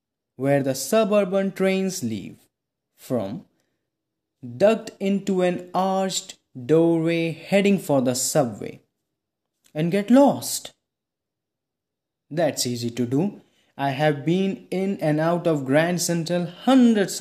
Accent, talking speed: Indian, 110 wpm